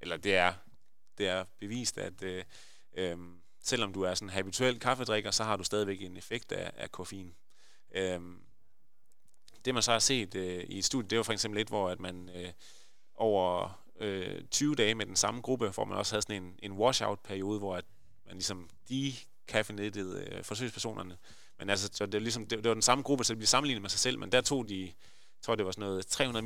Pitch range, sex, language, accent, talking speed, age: 95-115 Hz, male, Danish, native, 220 wpm, 30-49